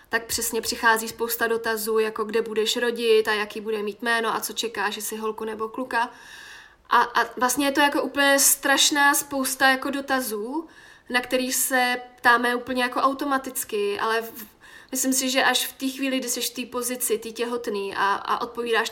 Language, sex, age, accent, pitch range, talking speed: Czech, female, 20-39, native, 230-255 Hz, 185 wpm